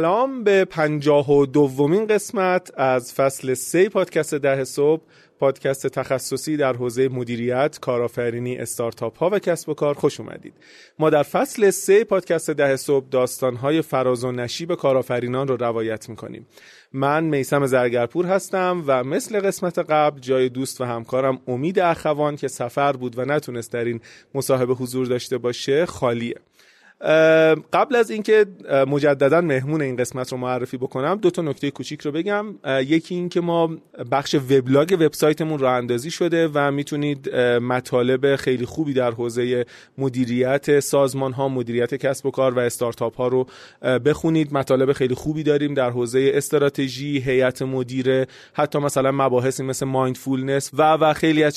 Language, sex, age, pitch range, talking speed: Persian, male, 30-49, 130-155 Hz, 150 wpm